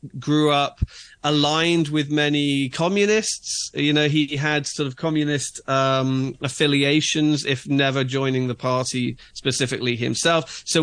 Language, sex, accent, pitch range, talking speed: English, male, British, 130-155 Hz, 125 wpm